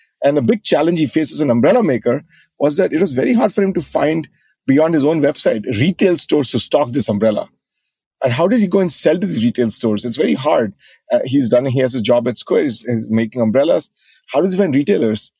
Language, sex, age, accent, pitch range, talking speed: English, male, 50-69, Indian, 125-185 Hz, 240 wpm